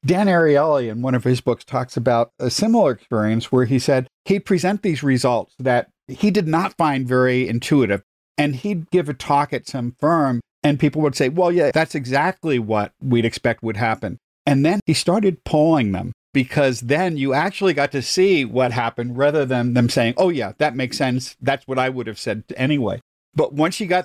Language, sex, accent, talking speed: English, male, American, 205 wpm